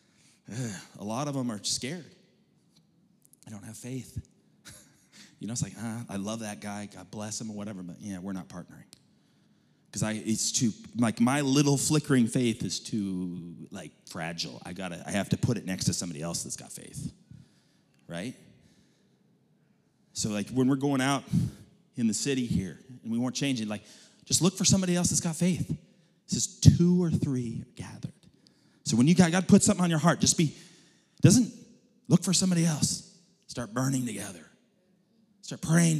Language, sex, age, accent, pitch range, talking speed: English, male, 30-49, American, 115-185 Hz, 185 wpm